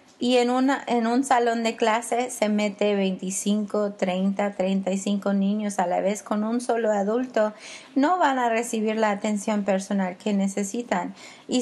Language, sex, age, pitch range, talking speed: English, female, 30-49, 205-240 Hz, 160 wpm